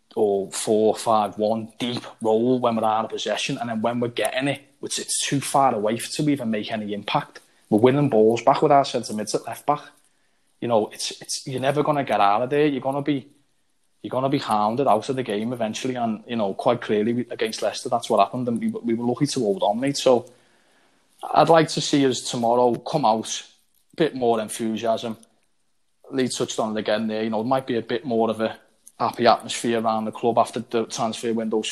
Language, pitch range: English, 110-135 Hz